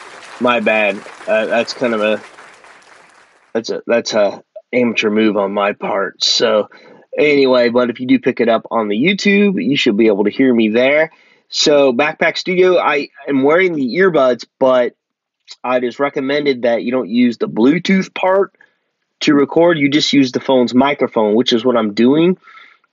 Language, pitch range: English, 115-155 Hz